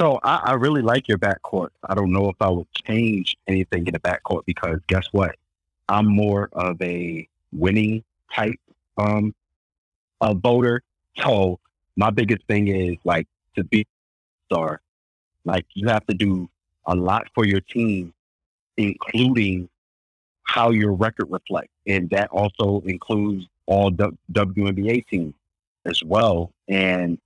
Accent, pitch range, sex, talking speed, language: American, 85-105 Hz, male, 145 wpm, English